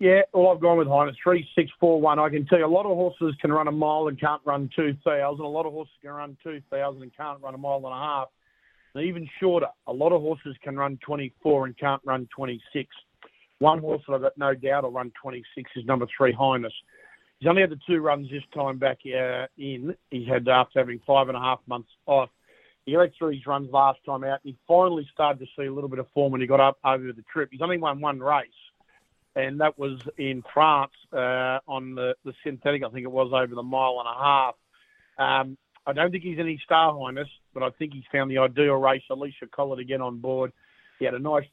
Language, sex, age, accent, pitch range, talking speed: English, male, 40-59, Australian, 130-150 Hz, 240 wpm